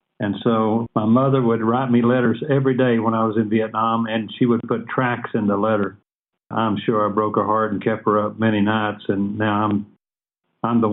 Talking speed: 220 wpm